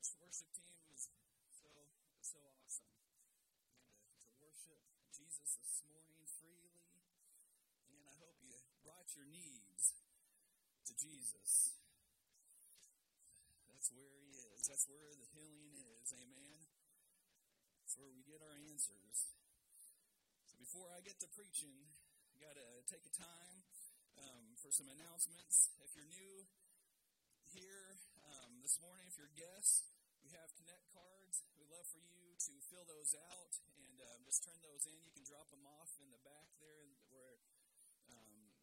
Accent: American